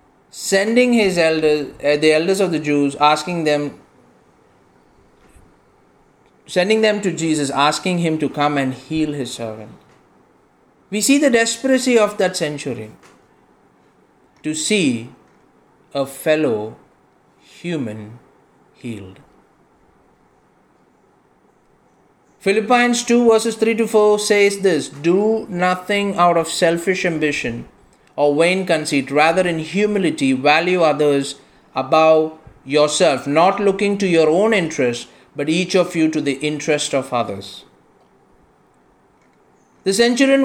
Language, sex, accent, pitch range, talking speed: English, male, Indian, 145-210 Hz, 115 wpm